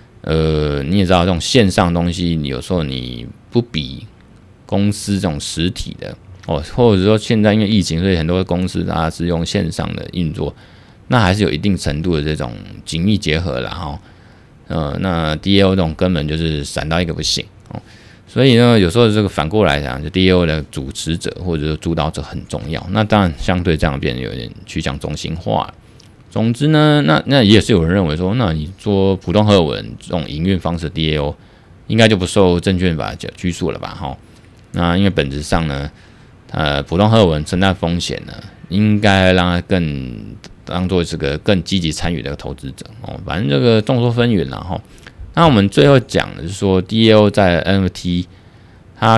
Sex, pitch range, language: male, 80-105 Hz, Chinese